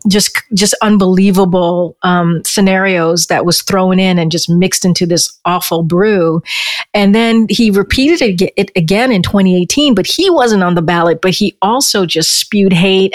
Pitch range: 185-230 Hz